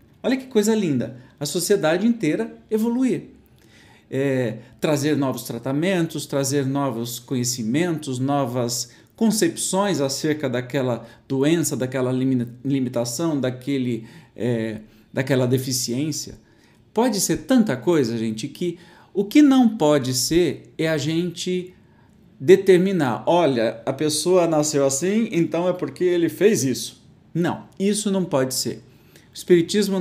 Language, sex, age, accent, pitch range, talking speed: Portuguese, male, 50-69, Brazilian, 125-175 Hz, 110 wpm